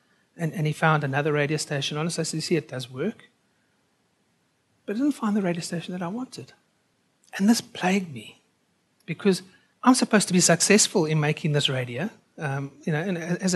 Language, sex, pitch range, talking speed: English, male, 165-225 Hz, 195 wpm